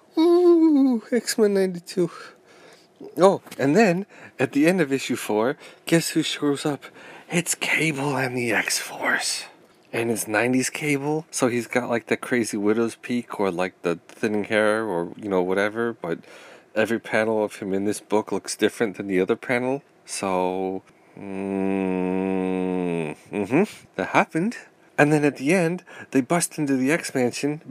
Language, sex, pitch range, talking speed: English, male, 105-145 Hz, 155 wpm